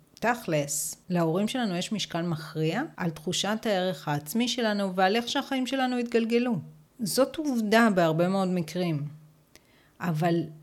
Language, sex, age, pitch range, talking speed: Hebrew, female, 40-59, 160-215 Hz, 125 wpm